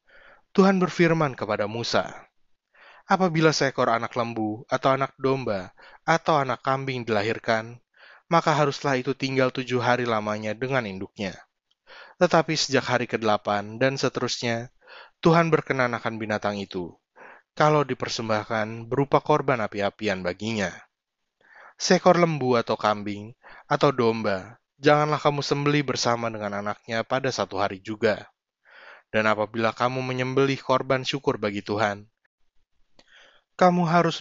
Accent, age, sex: native, 20-39, male